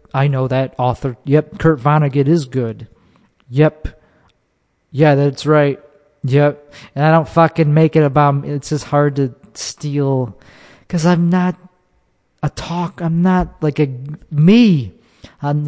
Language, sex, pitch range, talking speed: English, male, 125-155 Hz, 145 wpm